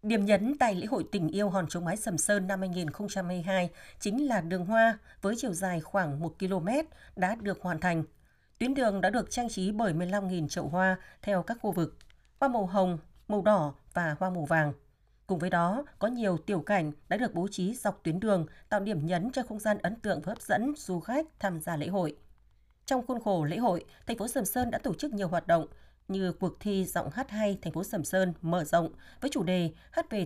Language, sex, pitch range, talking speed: Vietnamese, female, 175-215 Hz, 225 wpm